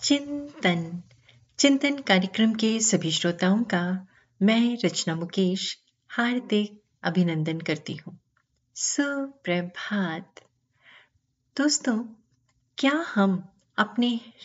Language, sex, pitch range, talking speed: Hindi, female, 165-255 Hz, 60 wpm